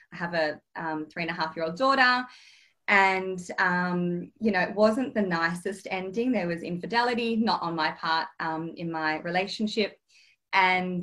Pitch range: 175-215 Hz